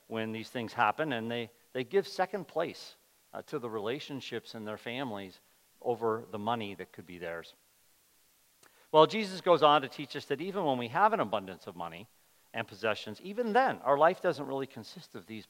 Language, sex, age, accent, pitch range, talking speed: English, male, 50-69, American, 120-175 Hz, 200 wpm